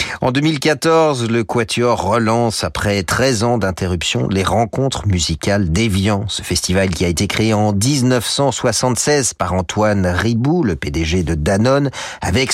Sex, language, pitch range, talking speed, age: male, French, 90-125 Hz, 140 wpm, 40-59